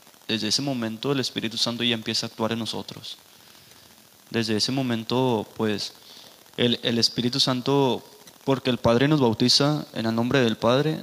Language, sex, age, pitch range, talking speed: Spanish, male, 20-39, 110-125 Hz, 165 wpm